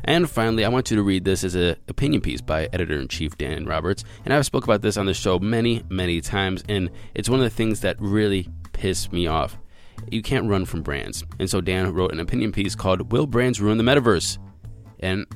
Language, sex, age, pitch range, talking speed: English, male, 20-39, 90-120 Hz, 230 wpm